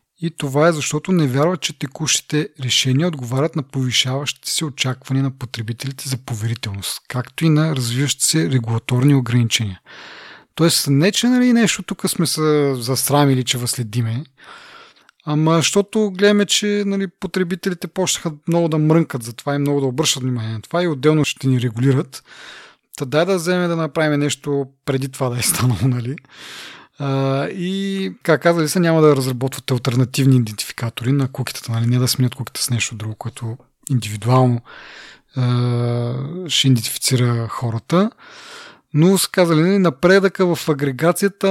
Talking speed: 145 wpm